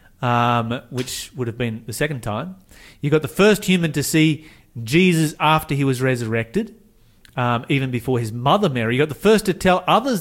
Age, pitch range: 40-59, 130-185 Hz